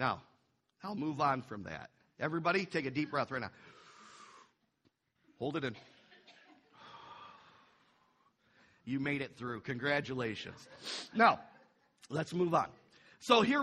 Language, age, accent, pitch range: English, 50-69, American, 165-250 Hz